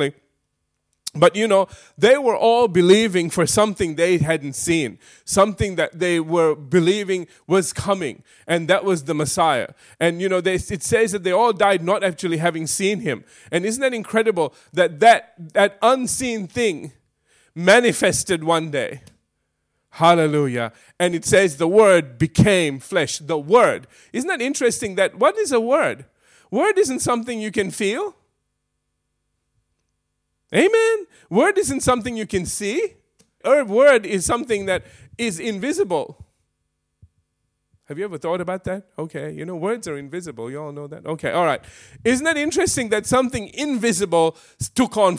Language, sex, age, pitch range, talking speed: English, male, 30-49, 160-225 Hz, 150 wpm